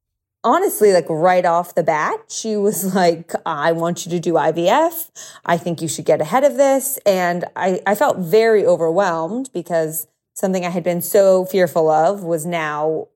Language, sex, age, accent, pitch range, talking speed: English, female, 30-49, American, 165-195 Hz, 180 wpm